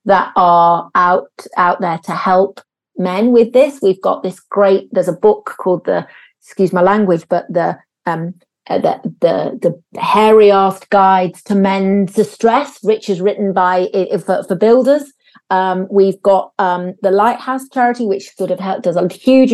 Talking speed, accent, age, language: 170 wpm, British, 40-59, English